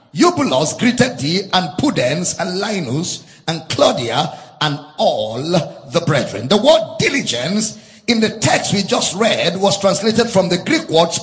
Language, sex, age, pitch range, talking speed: English, male, 50-69, 180-245 Hz, 140 wpm